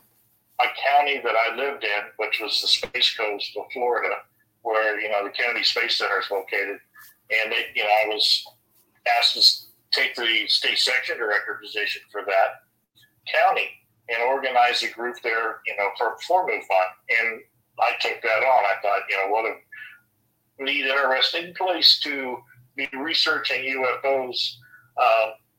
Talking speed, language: 160 wpm, English